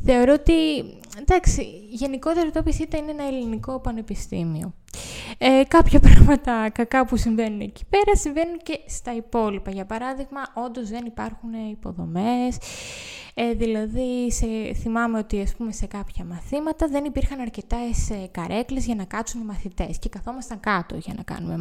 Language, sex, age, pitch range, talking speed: Greek, female, 20-39, 215-275 Hz, 140 wpm